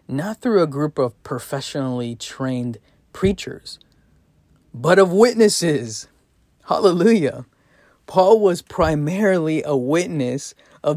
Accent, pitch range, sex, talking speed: American, 135-175 Hz, male, 100 wpm